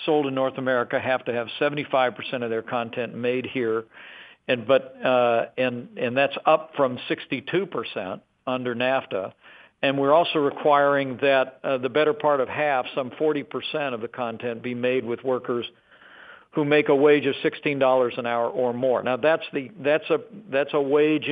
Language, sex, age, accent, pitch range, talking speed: English, male, 50-69, American, 120-145 Hz, 175 wpm